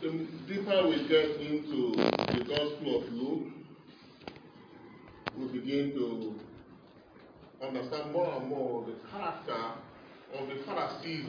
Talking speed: 110 wpm